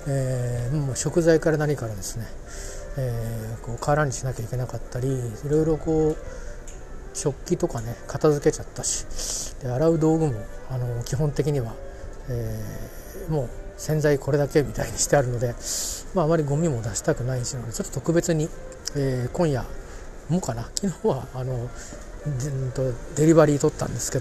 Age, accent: 40-59, native